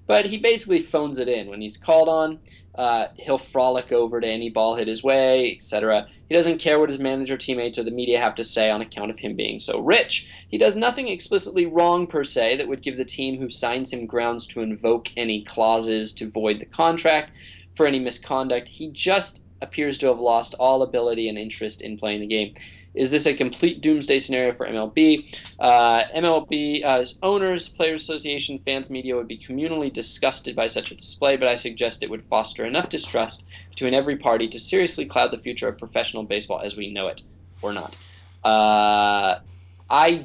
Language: English